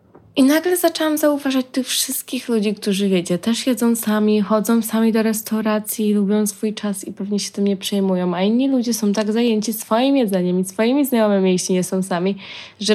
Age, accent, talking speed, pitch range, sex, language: 20-39, native, 190 wpm, 185-235 Hz, female, Polish